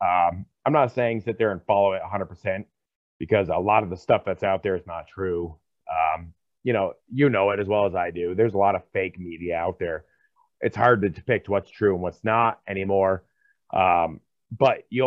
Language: English